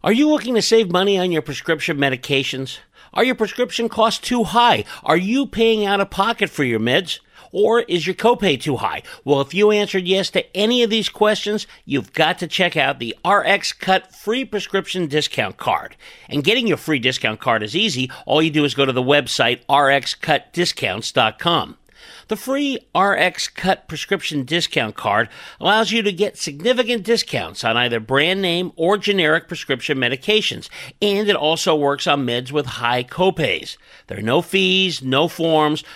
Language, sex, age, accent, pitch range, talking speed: English, male, 50-69, American, 140-220 Hz, 175 wpm